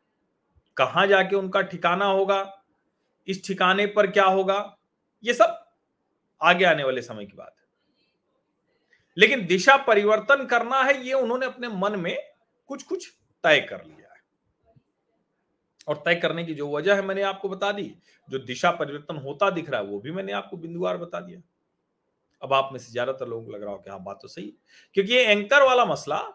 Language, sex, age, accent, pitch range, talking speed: Hindi, male, 40-59, native, 145-205 Hz, 180 wpm